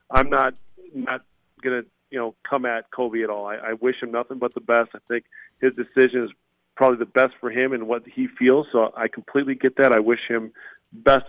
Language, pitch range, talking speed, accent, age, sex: English, 120-150 Hz, 225 wpm, American, 40-59, male